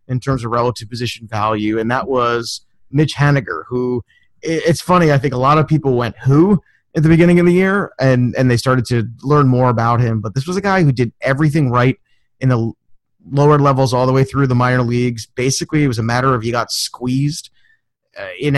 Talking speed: 215 wpm